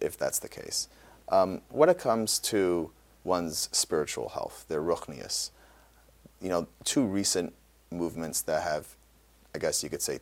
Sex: male